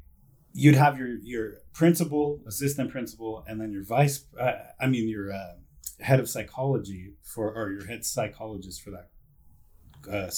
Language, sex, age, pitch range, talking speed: English, male, 30-49, 95-130 Hz, 155 wpm